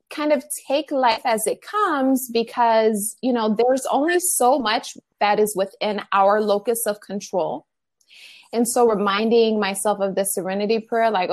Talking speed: 160 wpm